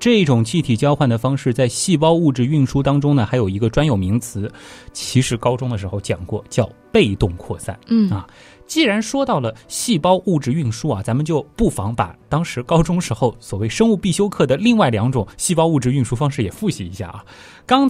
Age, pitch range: 20-39, 115-175 Hz